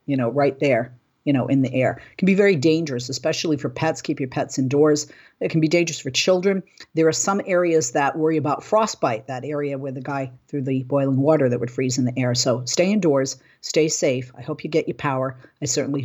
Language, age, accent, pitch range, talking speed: English, 50-69, American, 130-160 Hz, 235 wpm